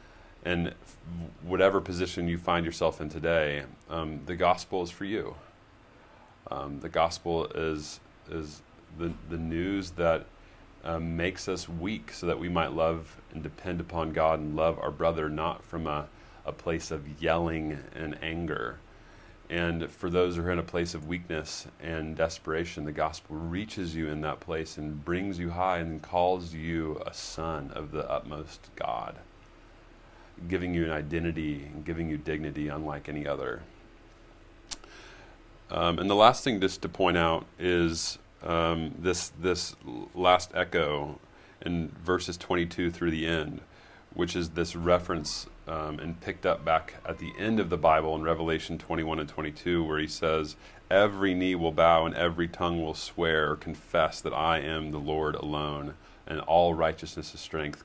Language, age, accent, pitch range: English, 30-49, American, 80-90 Hz